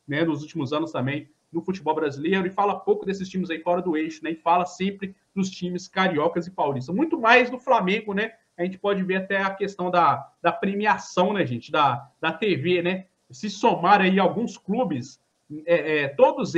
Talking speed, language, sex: 200 wpm, Portuguese, male